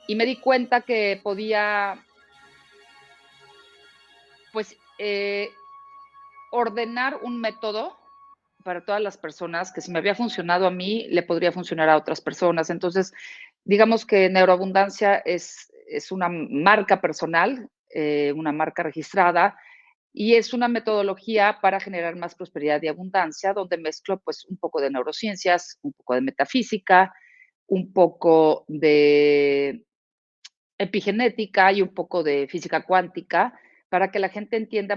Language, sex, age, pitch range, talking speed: Spanish, female, 40-59, 160-215 Hz, 130 wpm